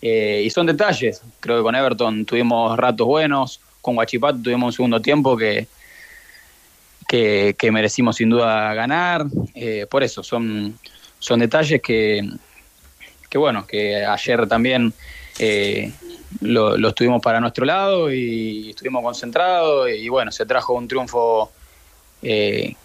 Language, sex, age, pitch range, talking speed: Spanish, male, 20-39, 105-130 Hz, 140 wpm